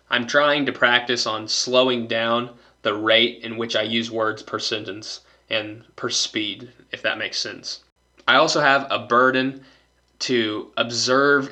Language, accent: English, American